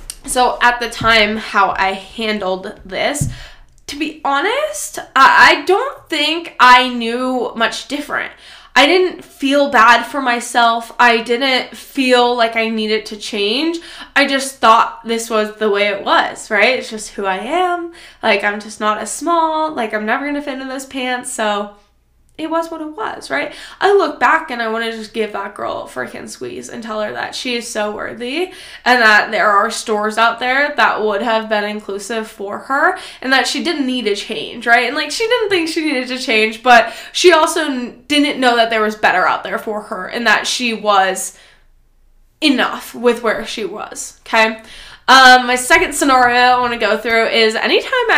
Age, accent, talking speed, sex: 20-39, American, 195 wpm, female